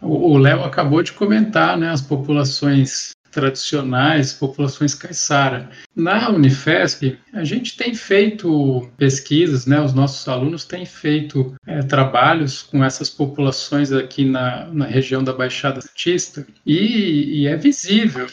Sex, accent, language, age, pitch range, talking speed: male, Brazilian, Portuguese, 50-69, 135-155 Hz, 130 wpm